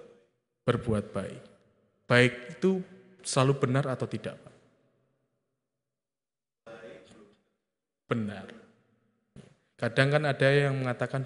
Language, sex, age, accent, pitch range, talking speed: Indonesian, male, 20-39, native, 120-140 Hz, 75 wpm